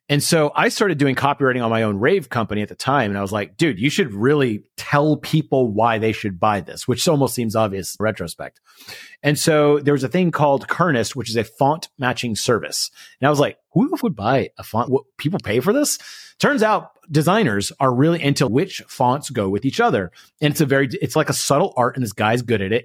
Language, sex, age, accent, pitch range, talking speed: English, male, 30-49, American, 115-160 Hz, 235 wpm